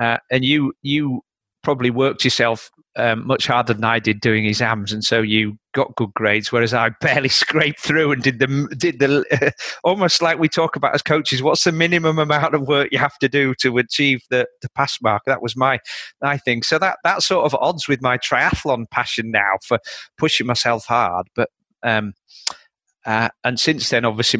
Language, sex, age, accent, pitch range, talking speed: English, male, 40-59, British, 110-140 Hz, 200 wpm